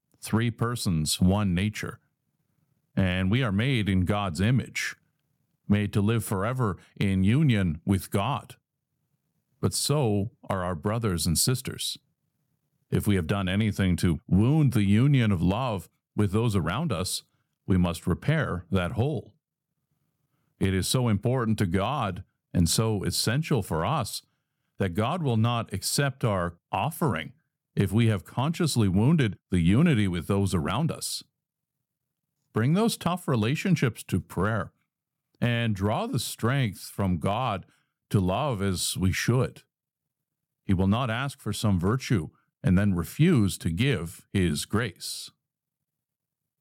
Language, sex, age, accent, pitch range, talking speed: English, male, 50-69, American, 100-145 Hz, 135 wpm